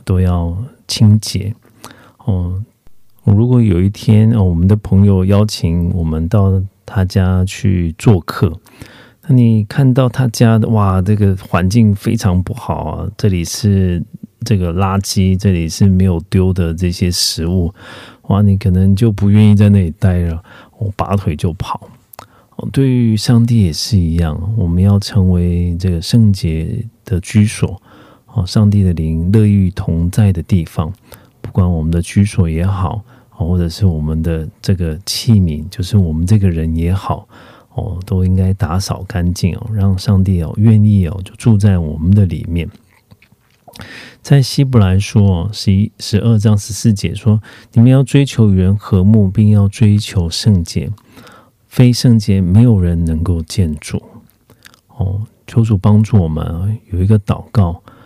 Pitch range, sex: 90-110 Hz, male